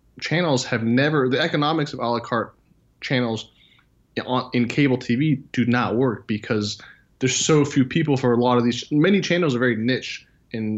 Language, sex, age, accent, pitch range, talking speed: English, male, 20-39, American, 110-135 Hz, 180 wpm